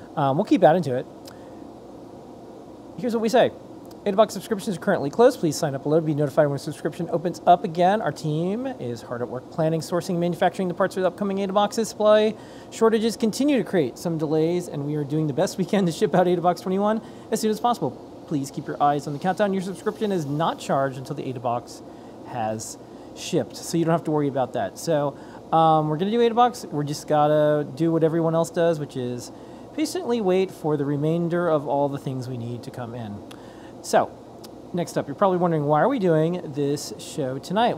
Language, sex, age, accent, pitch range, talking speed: English, male, 30-49, American, 150-190 Hz, 220 wpm